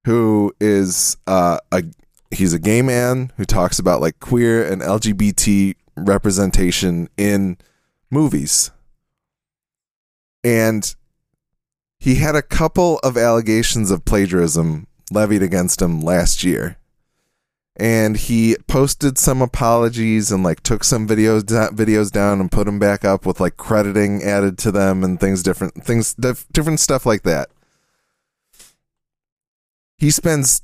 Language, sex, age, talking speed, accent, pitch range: English, male, 20-39, 125 wpm, American, 95-140 Hz